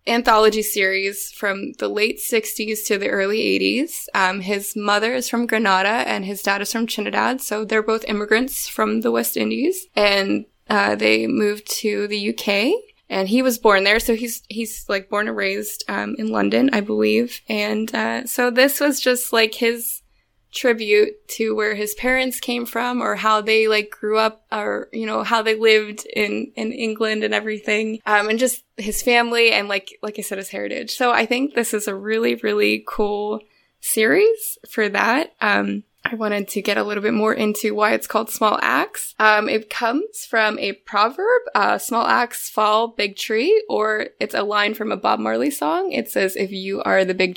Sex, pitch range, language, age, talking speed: female, 205-235 Hz, English, 20-39, 195 wpm